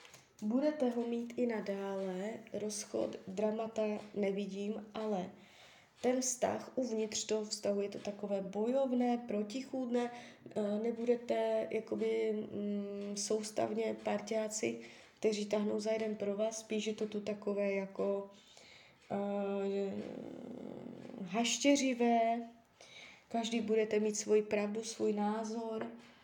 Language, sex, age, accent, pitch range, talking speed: Czech, female, 20-39, native, 200-225 Hz, 100 wpm